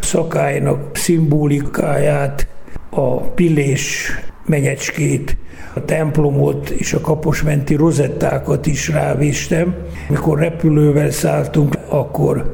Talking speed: 80 wpm